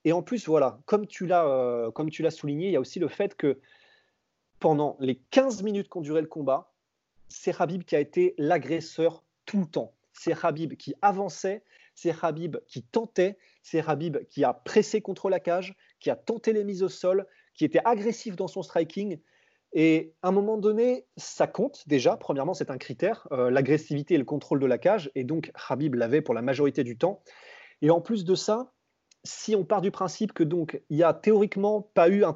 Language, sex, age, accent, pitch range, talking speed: French, male, 30-49, French, 150-200 Hz, 210 wpm